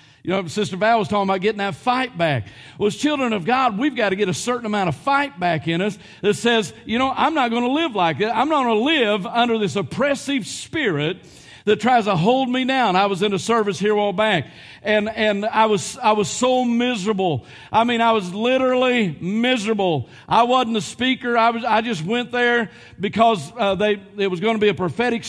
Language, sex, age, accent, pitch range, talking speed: English, male, 50-69, American, 195-250 Hz, 230 wpm